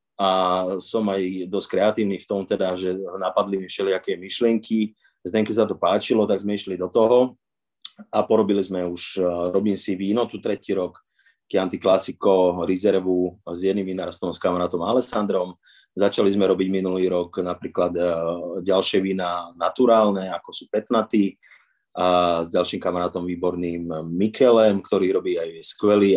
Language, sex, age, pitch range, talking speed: Slovak, male, 30-49, 90-110 Hz, 140 wpm